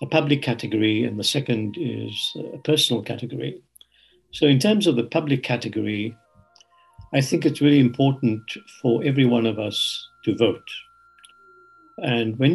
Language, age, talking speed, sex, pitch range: English, 60-79, 150 wpm, male, 115-160 Hz